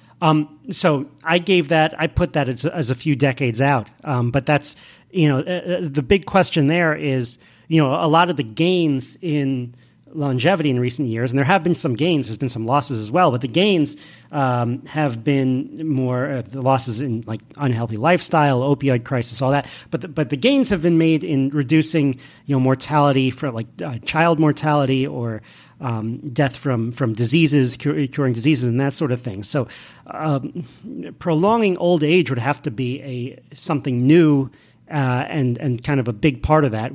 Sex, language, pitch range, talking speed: male, English, 130-170 Hz, 195 wpm